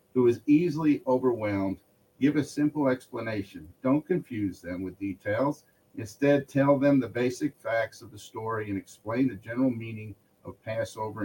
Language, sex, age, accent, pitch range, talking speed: English, male, 50-69, American, 100-130 Hz, 155 wpm